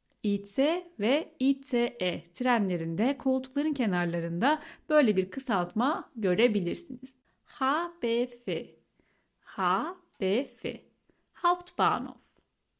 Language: Turkish